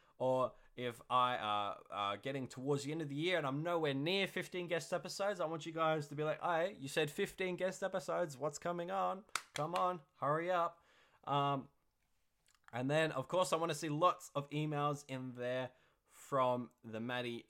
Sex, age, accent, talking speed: male, 20-39, Australian, 190 wpm